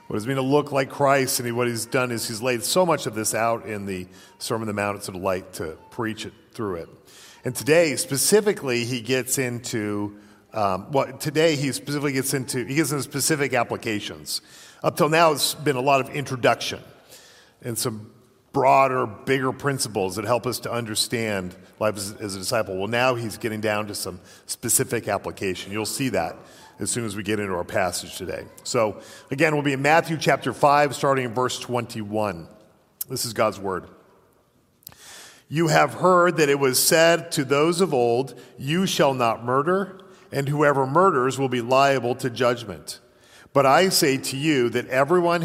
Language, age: English, 40-59